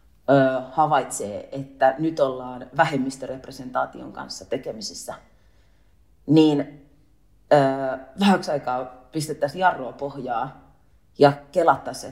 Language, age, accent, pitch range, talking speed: Swedish, 30-49, Finnish, 130-170 Hz, 75 wpm